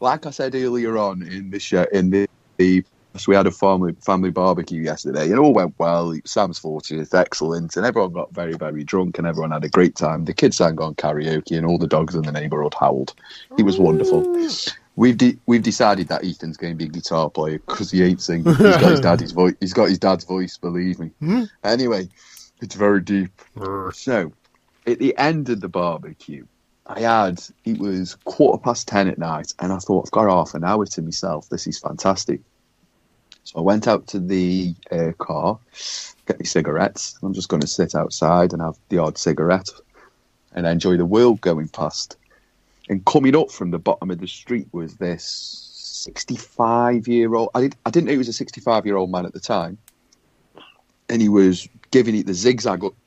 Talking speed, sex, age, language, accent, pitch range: 200 wpm, male, 30-49, English, British, 85-115 Hz